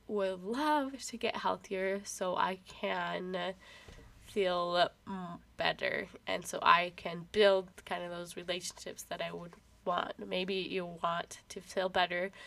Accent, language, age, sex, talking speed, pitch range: American, English, 10-29, female, 140 wpm, 180-210 Hz